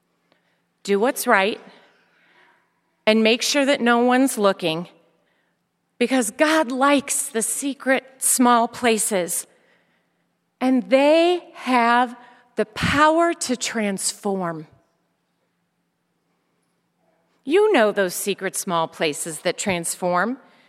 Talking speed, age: 95 wpm, 40-59